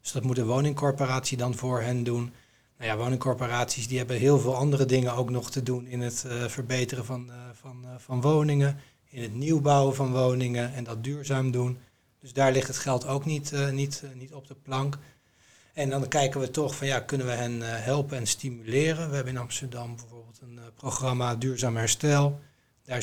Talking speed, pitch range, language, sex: 190 wpm, 120-135 Hz, English, male